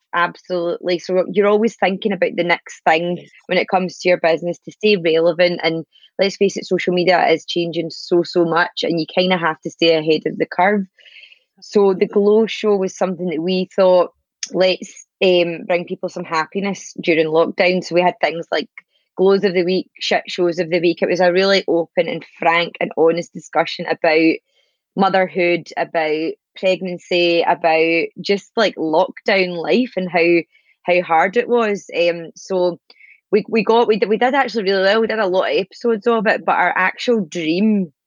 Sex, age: female, 20-39